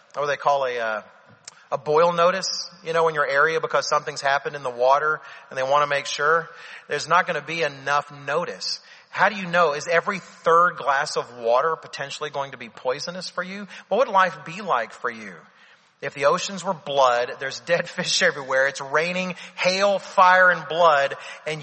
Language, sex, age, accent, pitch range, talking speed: English, male, 40-59, American, 140-170 Hz, 200 wpm